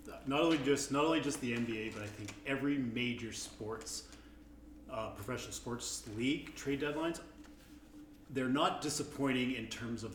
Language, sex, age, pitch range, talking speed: English, male, 30-49, 115-135 Hz, 155 wpm